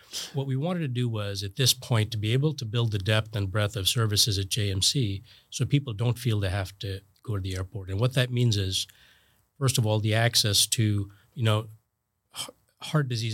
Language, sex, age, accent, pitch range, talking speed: English, male, 40-59, American, 100-120 Hz, 215 wpm